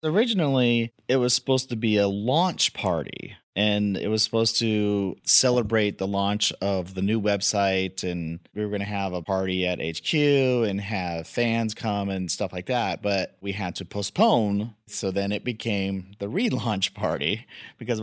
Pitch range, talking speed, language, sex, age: 100-115 Hz, 175 wpm, English, male, 30-49